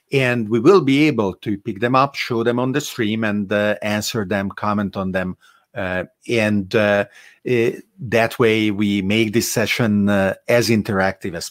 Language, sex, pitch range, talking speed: English, male, 100-125 Hz, 180 wpm